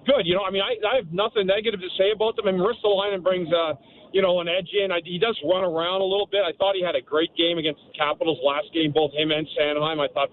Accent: American